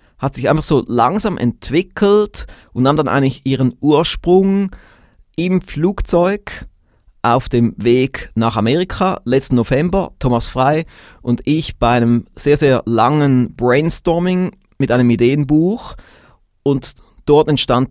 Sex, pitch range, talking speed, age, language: male, 120-155 Hz, 125 wpm, 30-49, German